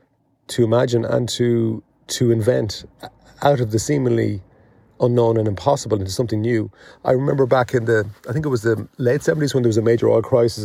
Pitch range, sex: 105-120 Hz, male